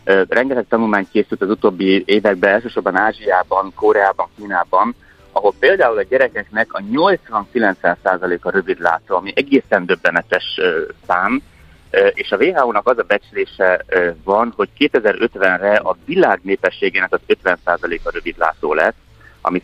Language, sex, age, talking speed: Hungarian, male, 30-49, 120 wpm